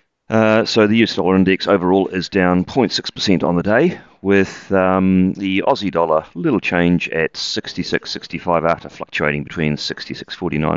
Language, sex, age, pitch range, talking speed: English, male, 40-59, 80-105 Hz, 150 wpm